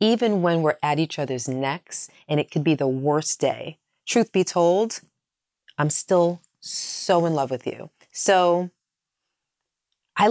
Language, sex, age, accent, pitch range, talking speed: English, female, 30-49, American, 150-180 Hz, 150 wpm